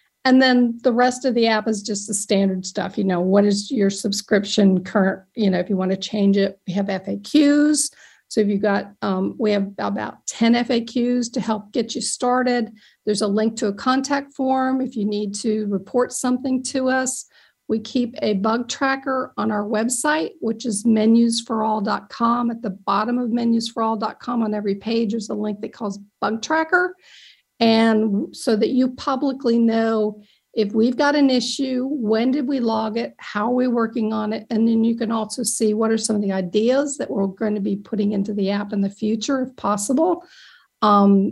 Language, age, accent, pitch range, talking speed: English, 50-69, American, 205-250 Hz, 195 wpm